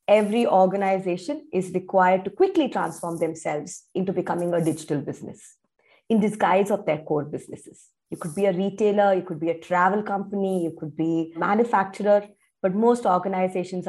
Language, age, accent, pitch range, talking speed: English, 20-39, Indian, 170-210 Hz, 165 wpm